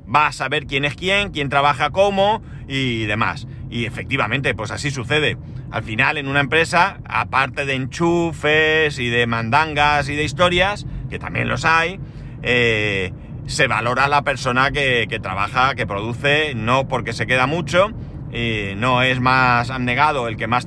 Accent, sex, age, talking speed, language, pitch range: Spanish, male, 40-59, 165 wpm, Spanish, 120-145 Hz